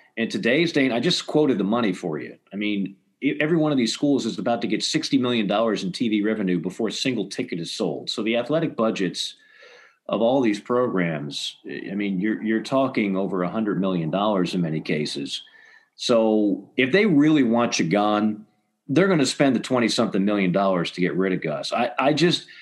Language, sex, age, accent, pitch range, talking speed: English, male, 40-59, American, 100-130 Hz, 200 wpm